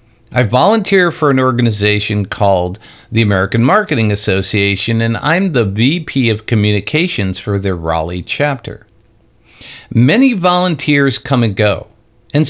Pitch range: 110-145 Hz